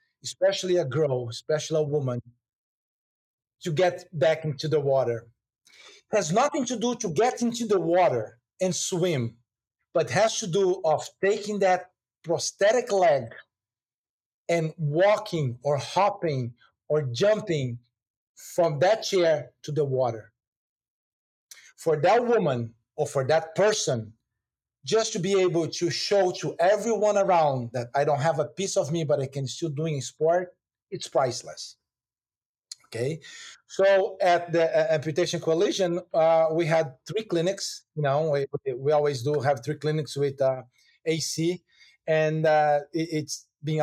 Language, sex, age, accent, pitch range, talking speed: English, male, 50-69, Brazilian, 135-180 Hz, 150 wpm